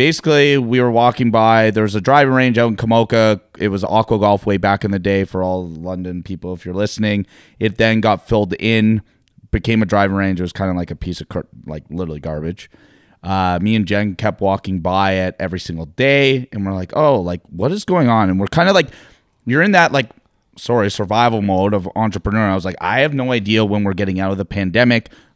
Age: 30-49